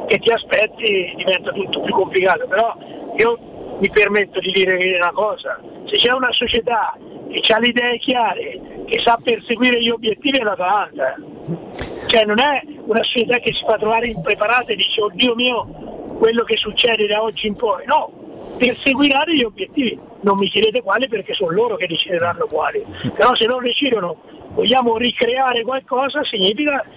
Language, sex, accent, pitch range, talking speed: Italian, male, native, 200-275 Hz, 170 wpm